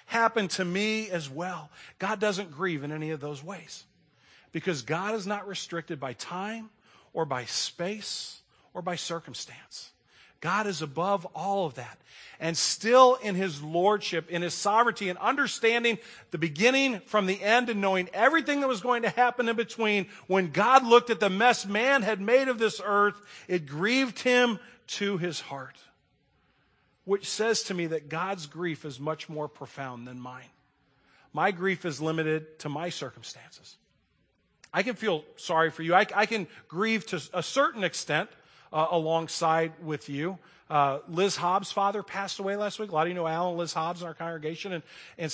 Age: 40-59